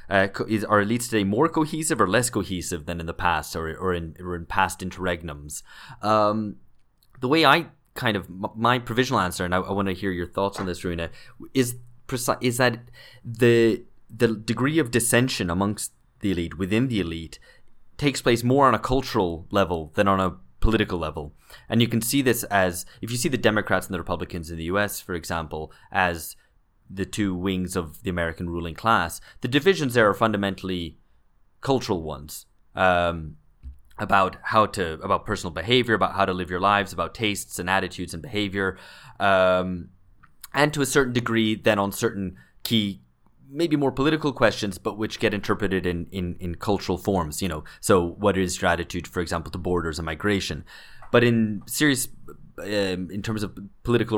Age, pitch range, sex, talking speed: 20-39, 90-115 Hz, male, 185 wpm